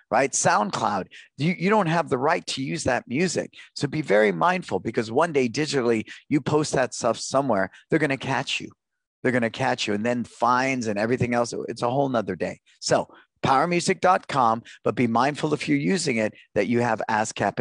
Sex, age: male, 50-69